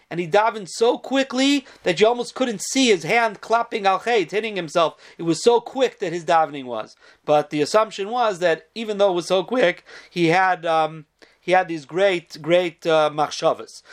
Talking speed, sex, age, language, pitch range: 195 wpm, male, 40-59, English, 175-240 Hz